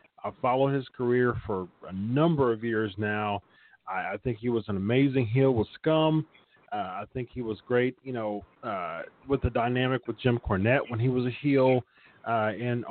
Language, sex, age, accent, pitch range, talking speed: English, male, 40-59, American, 115-150 Hz, 195 wpm